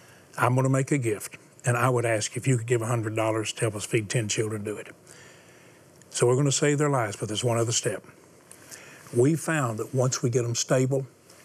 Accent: American